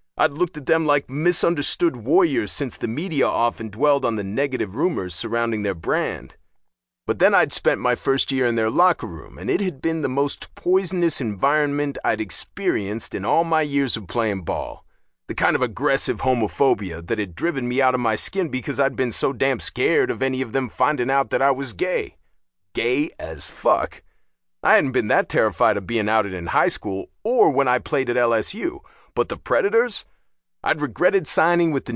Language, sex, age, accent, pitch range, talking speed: English, male, 30-49, American, 110-155 Hz, 195 wpm